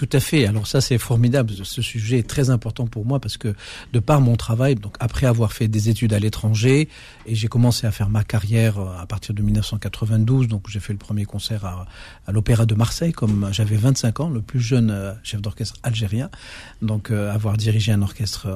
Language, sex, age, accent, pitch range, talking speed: French, male, 50-69, French, 110-145 Hz, 210 wpm